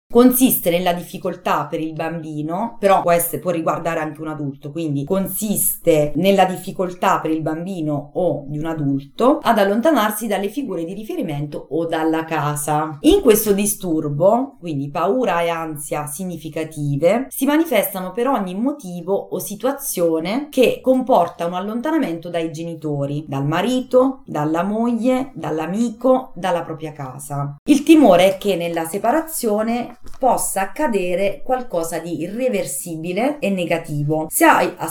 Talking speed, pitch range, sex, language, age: 130 wpm, 160-235 Hz, female, Italian, 30-49